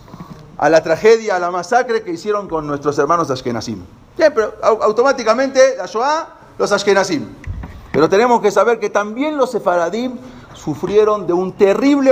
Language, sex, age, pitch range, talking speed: English, male, 50-69, 130-195 Hz, 155 wpm